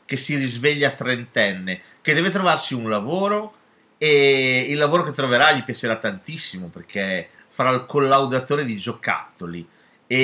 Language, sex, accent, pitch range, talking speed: Italian, male, native, 105-150 Hz, 145 wpm